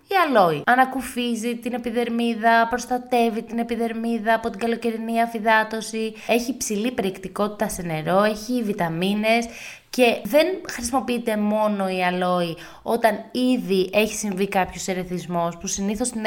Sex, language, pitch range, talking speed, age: female, Greek, 195-255 Hz, 125 wpm, 20-39